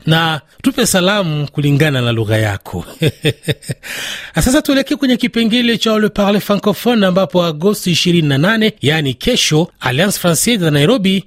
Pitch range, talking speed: 135-200 Hz, 130 wpm